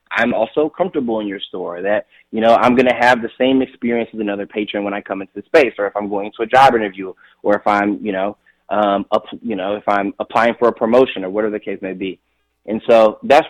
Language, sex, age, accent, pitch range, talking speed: English, male, 20-39, American, 100-115 Hz, 255 wpm